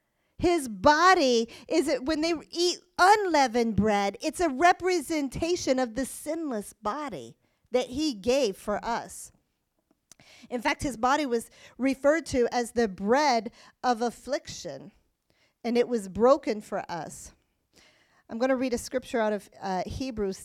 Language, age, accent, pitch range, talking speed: English, 40-59, American, 215-270 Hz, 145 wpm